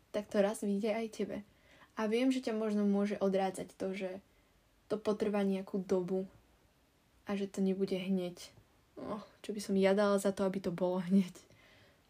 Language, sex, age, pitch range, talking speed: Slovak, female, 20-39, 190-235 Hz, 170 wpm